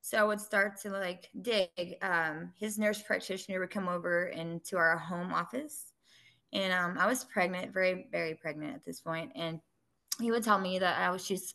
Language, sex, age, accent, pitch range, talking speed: English, female, 20-39, American, 185-225 Hz, 190 wpm